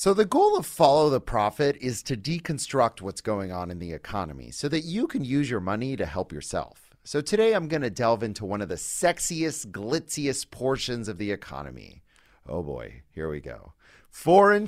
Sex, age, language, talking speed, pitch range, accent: male, 30-49, English, 190 wpm, 95-155 Hz, American